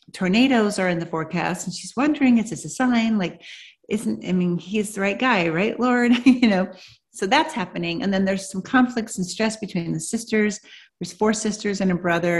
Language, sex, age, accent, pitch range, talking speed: English, female, 40-59, American, 170-210 Hz, 210 wpm